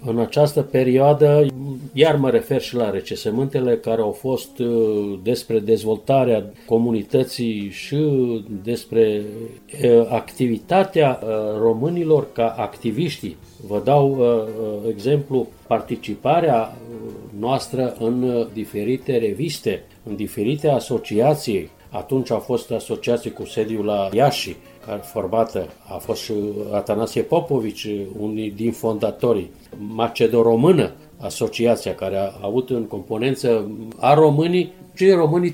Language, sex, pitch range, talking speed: Romanian, male, 110-140 Hz, 100 wpm